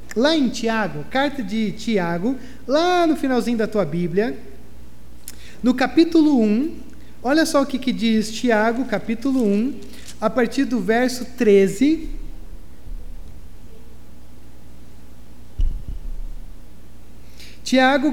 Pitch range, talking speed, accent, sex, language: 175-270 Hz, 100 wpm, Brazilian, male, Portuguese